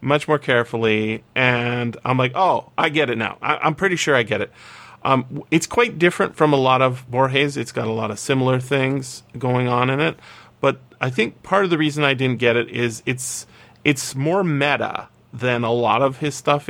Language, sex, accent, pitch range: English, male, American, 115-145 Hz